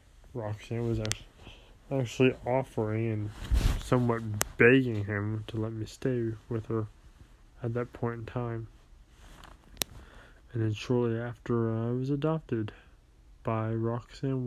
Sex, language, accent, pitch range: male, English, American, 105-130 Hz